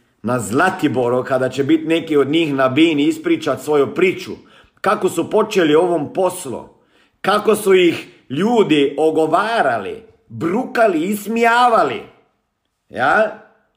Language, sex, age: Croatian, male, 50-69